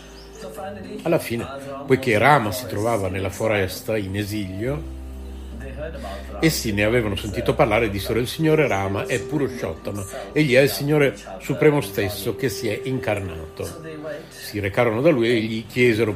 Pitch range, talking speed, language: 90-125 Hz, 150 wpm, Italian